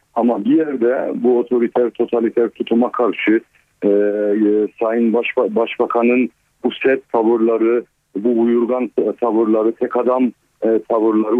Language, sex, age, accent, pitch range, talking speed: Turkish, male, 50-69, native, 115-135 Hz, 120 wpm